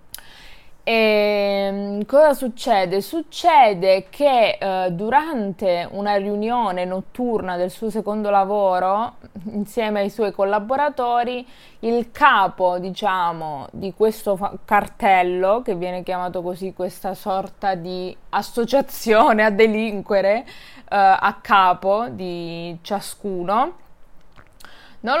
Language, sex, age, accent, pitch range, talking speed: Italian, female, 20-39, native, 190-225 Hz, 100 wpm